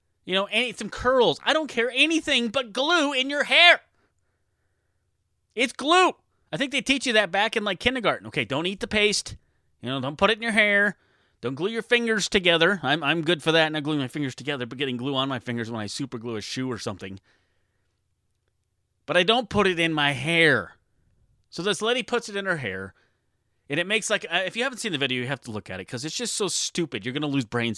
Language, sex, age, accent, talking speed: English, male, 30-49, American, 235 wpm